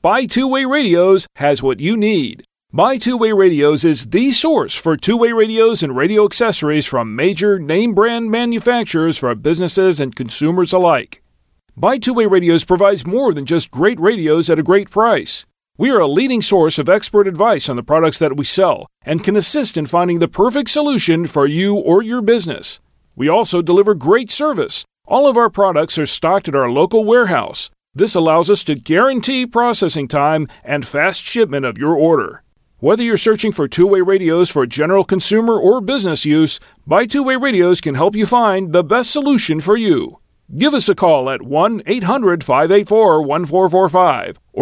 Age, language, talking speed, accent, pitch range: 40-59, English, 170 wpm, American, 155-220 Hz